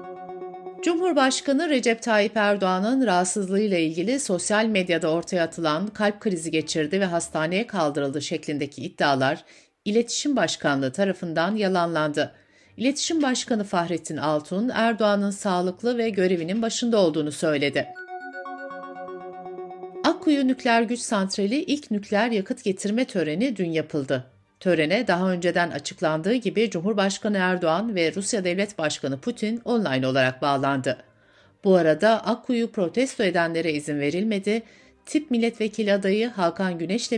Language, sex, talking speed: Turkish, female, 115 wpm